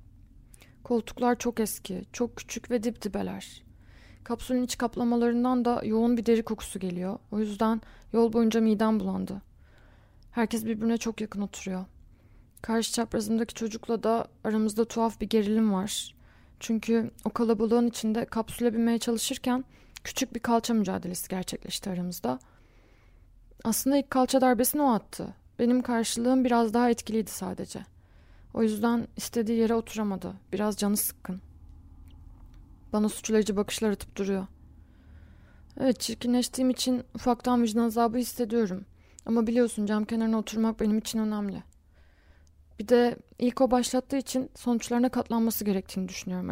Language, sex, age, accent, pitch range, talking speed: Turkish, female, 20-39, native, 190-235 Hz, 130 wpm